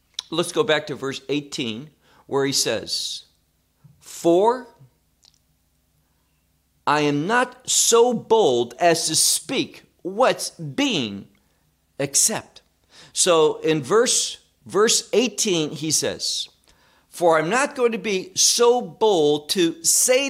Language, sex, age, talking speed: English, male, 50-69, 110 wpm